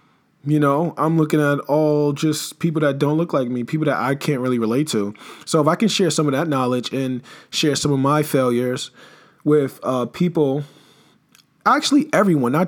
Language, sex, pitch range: English, male, 125-170 Hz